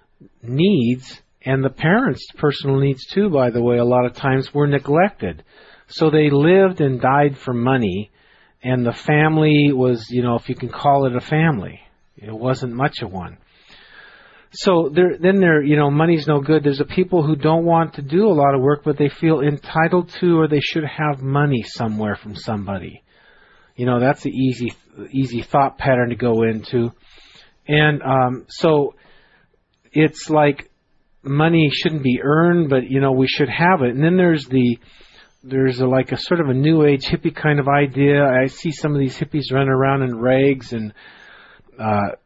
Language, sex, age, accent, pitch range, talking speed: English, male, 40-59, American, 130-150 Hz, 185 wpm